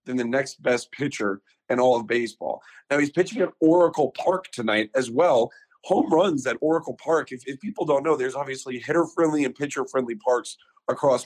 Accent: American